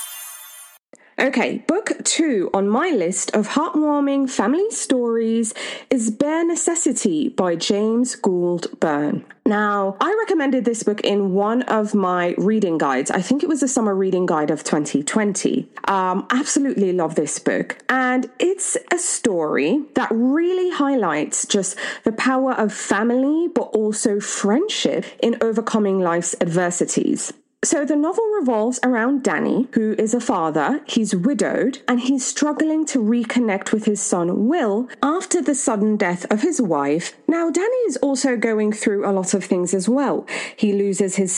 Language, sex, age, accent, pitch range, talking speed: English, female, 20-39, British, 200-280 Hz, 150 wpm